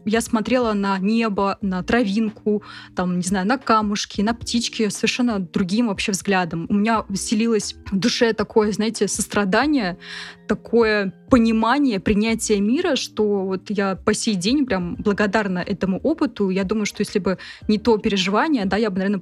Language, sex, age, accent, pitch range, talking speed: Russian, female, 20-39, native, 195-235 Hz, 160 wpm